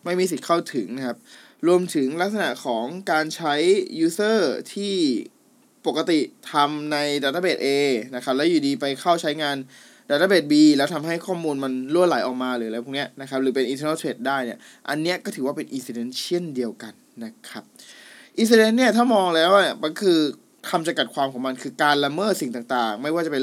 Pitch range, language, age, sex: 140-205 Hz, Thai, 20-39, male